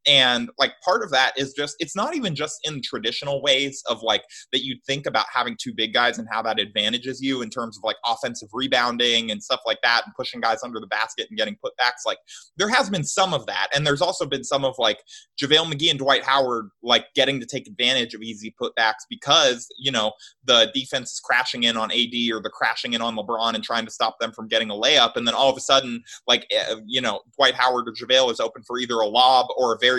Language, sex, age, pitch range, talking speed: English, male, 20-39, 115-155 Hz, 240 wpm